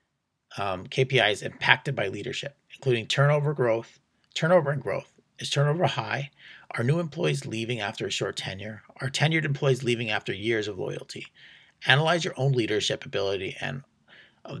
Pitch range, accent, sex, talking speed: 115-145 Hz, American, male, 150 wpm